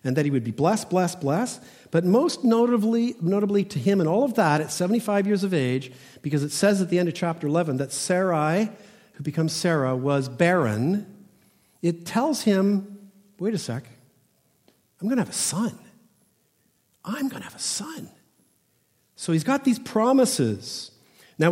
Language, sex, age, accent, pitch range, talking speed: English, male, 50-69, American, 150-200 Hz, 175 wpm